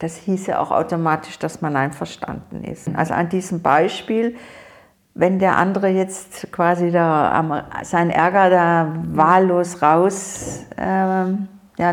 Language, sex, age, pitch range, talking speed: German, female, 50-69, 160-190 Hz, 135 wpm